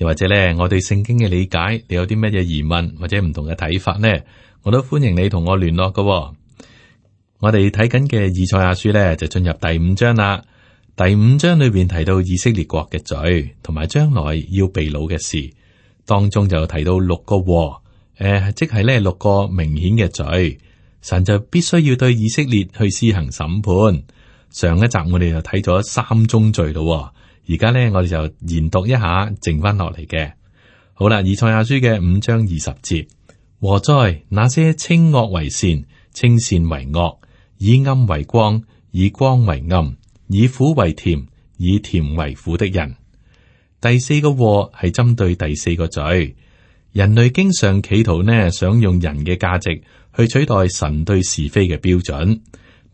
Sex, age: male, 30-49